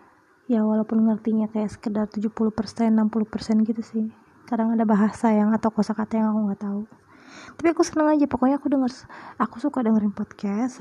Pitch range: 220-260 Hz